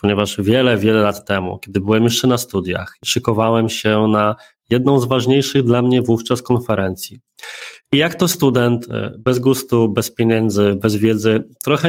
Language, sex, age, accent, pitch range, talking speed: Polish, male, 20-39, native, 105-125 Hz, 155 wpm